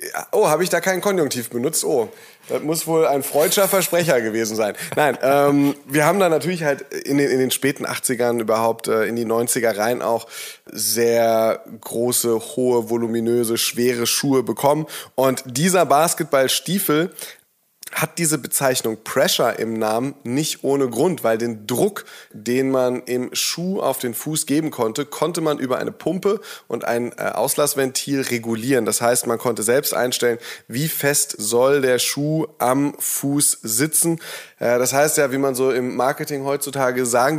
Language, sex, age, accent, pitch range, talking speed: German, male, 30-49, German, 120-150 Hz, 160 wpm